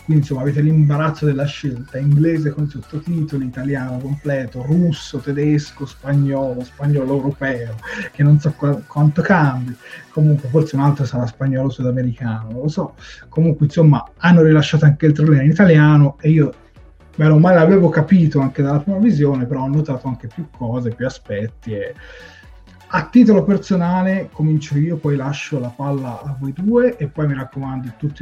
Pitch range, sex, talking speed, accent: 135-160 Hz, male, 165 wpm, native